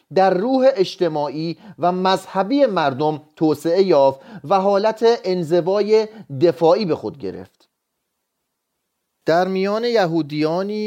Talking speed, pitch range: 100 wpm, 145-190 Hz